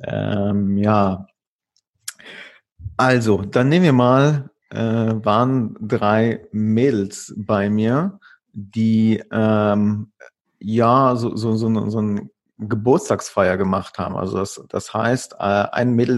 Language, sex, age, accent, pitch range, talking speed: German, male, 40-59, German, 105-120 Hz, 115 wpm